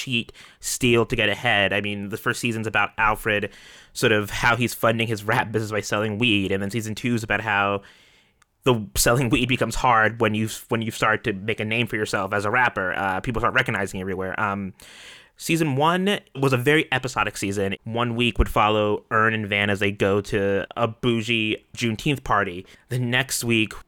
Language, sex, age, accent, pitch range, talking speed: English, male, 20-39, American, 105-125 Hz, 200 wpm